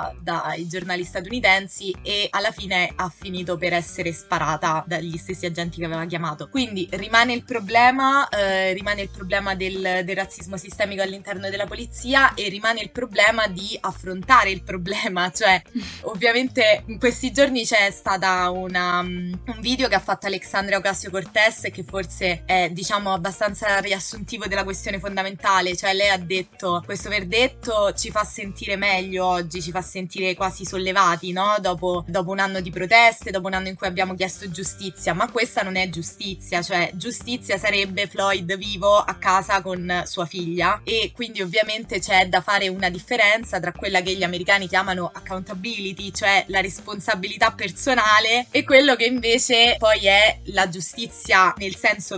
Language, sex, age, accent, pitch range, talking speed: Italian, female, 20-39, native, 185-215 Hz, 160 wpm